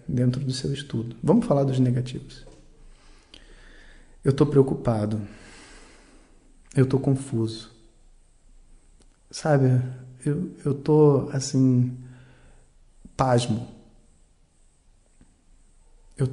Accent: Brazilian